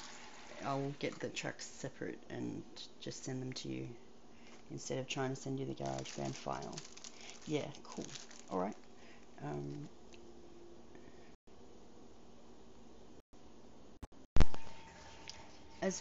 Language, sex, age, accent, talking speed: English, female, 30-49, Australian, 90 wpm